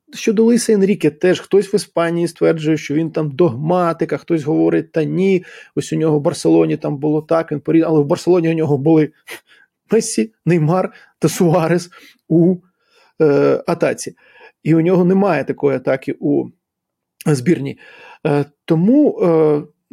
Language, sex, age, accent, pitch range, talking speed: Ukrainian, male, 20-39, native, 150-180 Hz, 145 wpm